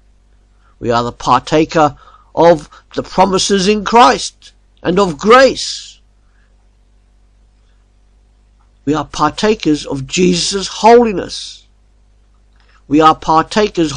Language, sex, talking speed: English, male, 90 wpm